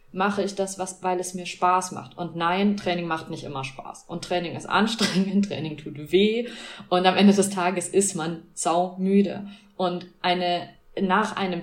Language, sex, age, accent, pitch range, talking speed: German, female, 30-49, German, 180-200 Hz, 180 wpm